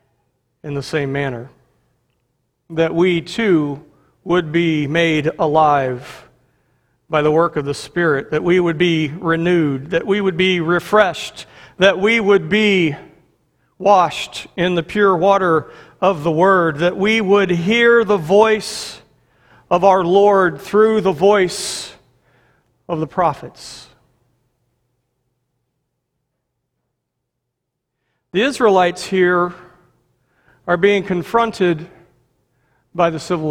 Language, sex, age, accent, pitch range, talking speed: English, male, 40-59, American, 135-185 Hz, 115 wpm